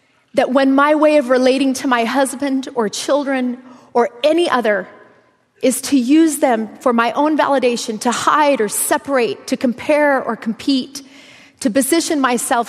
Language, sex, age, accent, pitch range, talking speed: English, female, 30-49, American, 235-285 Hz, 155 wpm